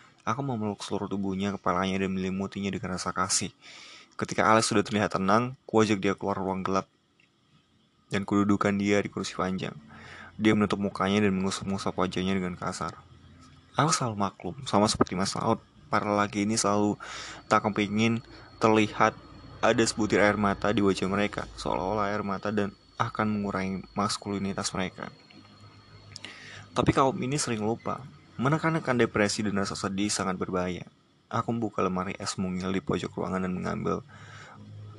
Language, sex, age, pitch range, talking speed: Indonesian, male, 20-39, 95-110 Hz, 145 wpm